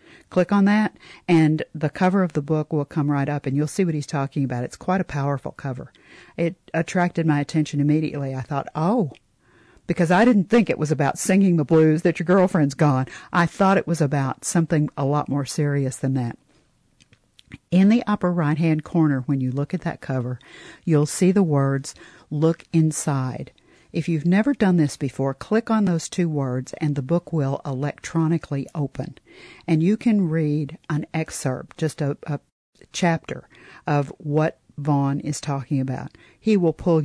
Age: 50-69